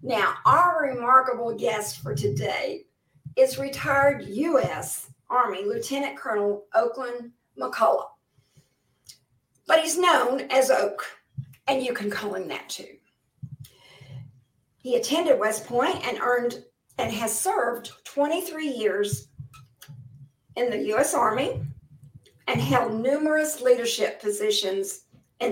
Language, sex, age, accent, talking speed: English, female, 50-69, American, 110 wpm